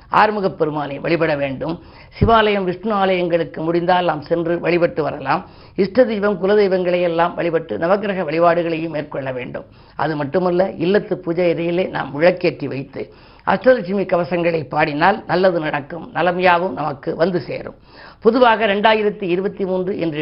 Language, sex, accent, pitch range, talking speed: Tamil, female, native, 160-195 Hz, 120 wpm